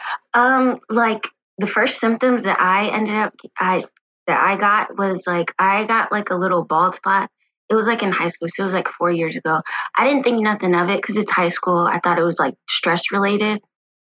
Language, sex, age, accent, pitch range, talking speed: English, female, 20-39, American, 170-200 Hz, 220 wpm